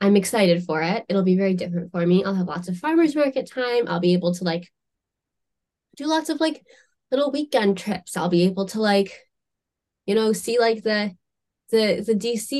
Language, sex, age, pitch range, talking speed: English, female, 10-29, 170-215 Hz, 200 wpm